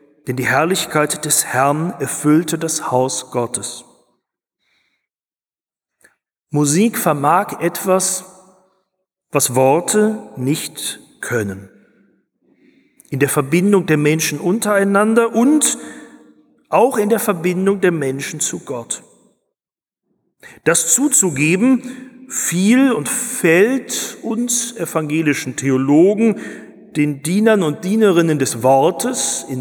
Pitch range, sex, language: 145-215 Hz, male, German